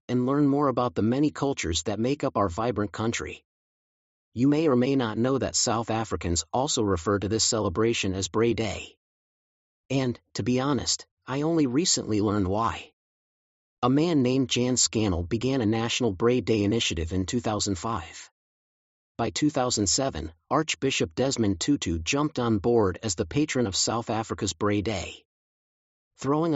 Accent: American